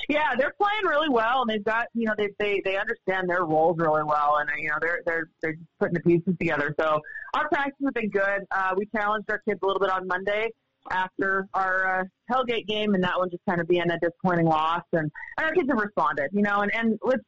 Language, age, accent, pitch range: English, 30-49, American, 170-225 Hz